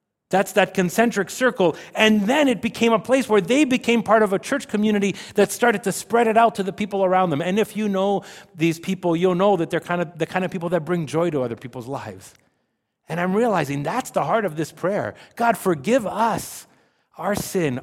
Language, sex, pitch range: English, male, 125-195 Hz